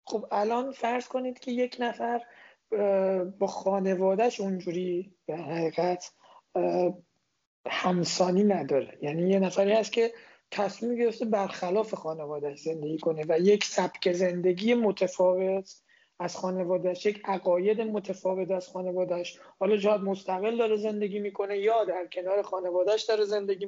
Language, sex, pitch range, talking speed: Persian, male, 180-205 Hz, 125 wpm